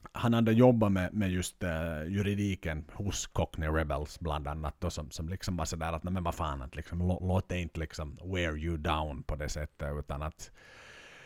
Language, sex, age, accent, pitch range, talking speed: Swedish, male, 50-69, Finnish, 85-110 Hz, 185 wpm